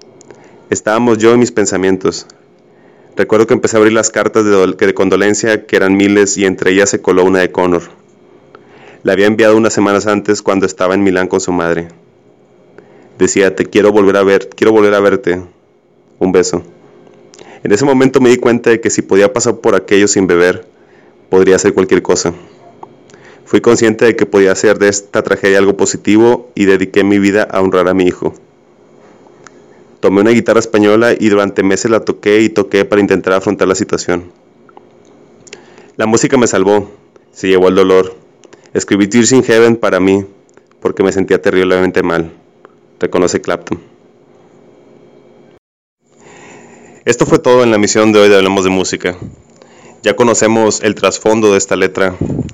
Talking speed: 165 wpm